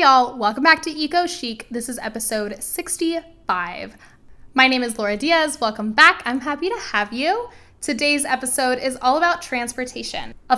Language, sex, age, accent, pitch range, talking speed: English, female, 10-29, American, 205-265 Hz, 165 wpm